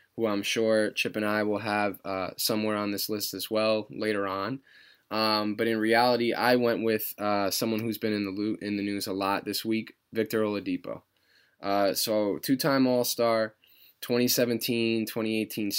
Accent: American